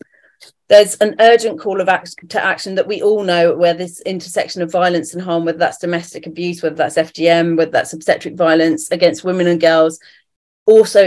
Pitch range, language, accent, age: 165-190 Hz, English, British, 40-59